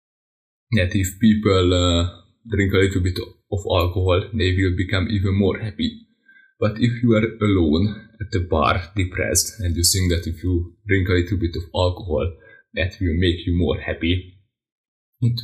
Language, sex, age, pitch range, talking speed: English, male, 20-39, 90-110 Hz, 170 wpm